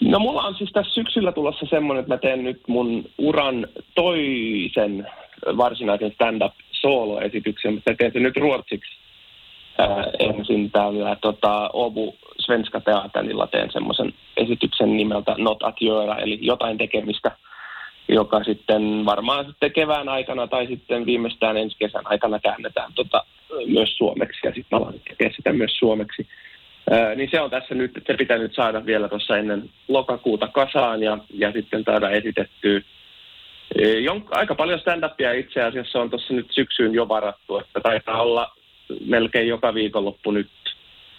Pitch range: 105-130 Hz